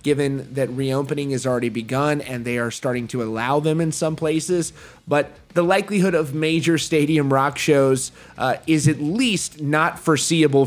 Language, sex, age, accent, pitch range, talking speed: English, male, 20-39, American, 135-180 Hz, 170 wpm